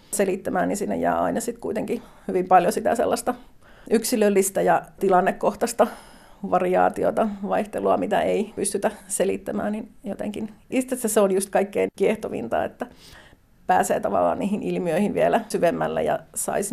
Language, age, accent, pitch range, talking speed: Finnish, 40-59, native, 195-220 Hz, 135 wpm